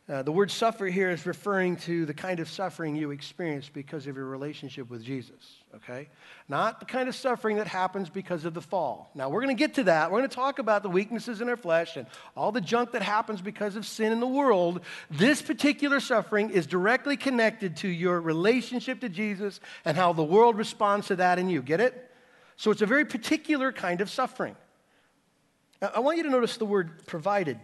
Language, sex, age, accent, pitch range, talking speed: English, male, 50-69, American, 165-225 Hz, 215 wpm